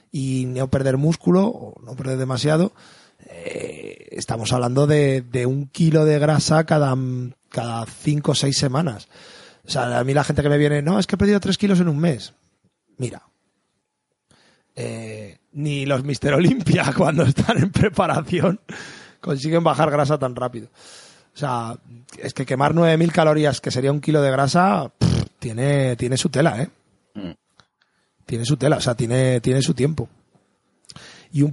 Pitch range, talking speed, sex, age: 130-160 Hz, 165 wpm, male, 30-49